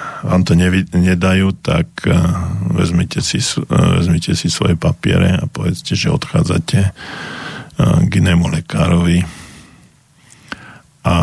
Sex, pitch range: male, 80-90 Hz